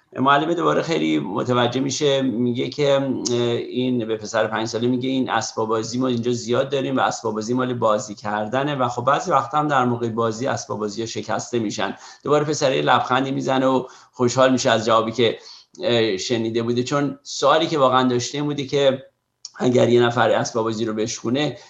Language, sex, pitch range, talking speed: Persian, male, 115-140 Hz, 180 wpm